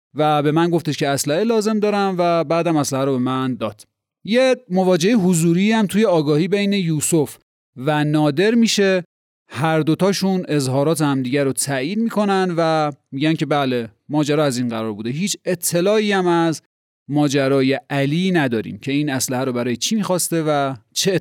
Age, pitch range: 30-49, 125-175 Hz